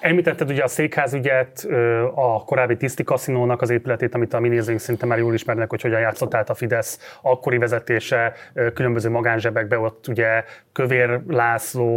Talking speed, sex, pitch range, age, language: 150 wpm, male, 115-140 Hz, 30-49, Hungarian